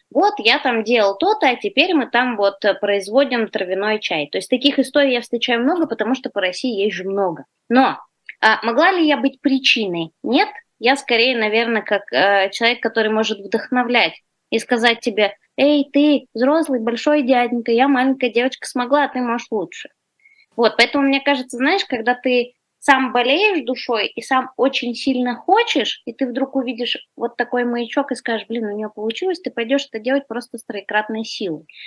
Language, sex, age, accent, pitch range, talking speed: Russian, female, 20-39, native, 220-270 Hz, 175 wpm